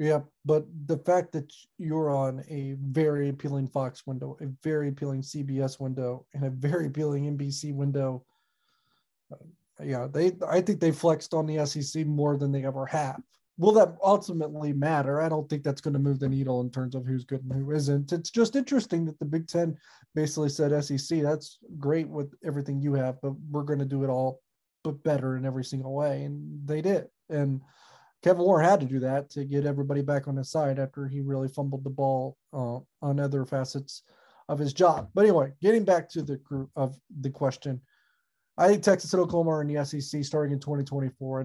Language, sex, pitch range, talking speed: English, male, 140-160 Hz, 205 wpm